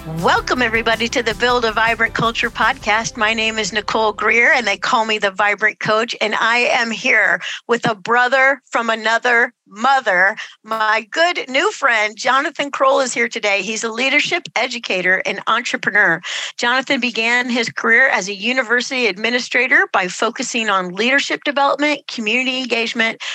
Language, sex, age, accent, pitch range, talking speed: English, female, 50-69, American, 200-255 Hz, 155 wpm